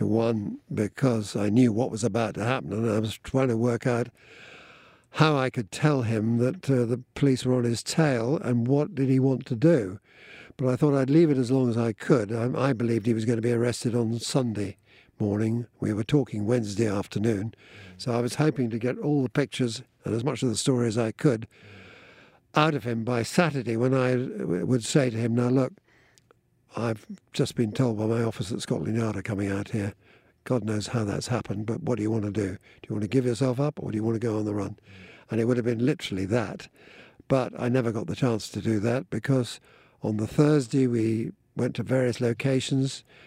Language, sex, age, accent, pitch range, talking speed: English, male, 60-79, British, 110-130 Hz, 225 wpm